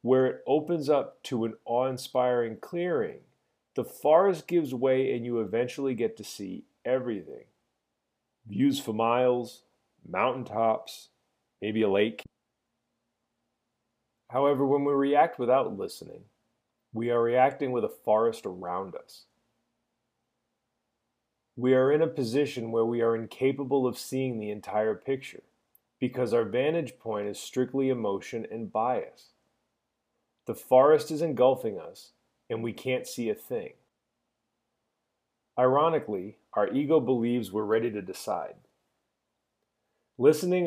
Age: 30-49